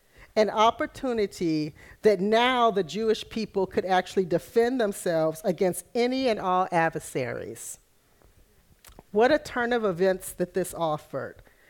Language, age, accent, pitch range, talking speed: English, 50-69, American, 175-230 Hz, 125 wpm